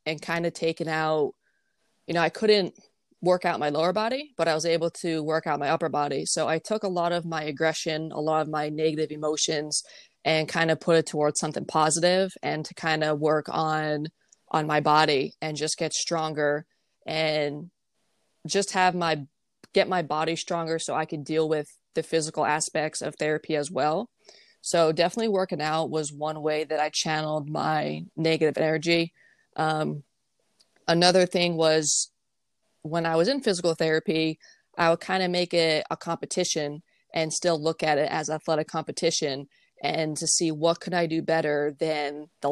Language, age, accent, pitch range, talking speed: English, 20-39, American, 155-170 Hz, 180 wpm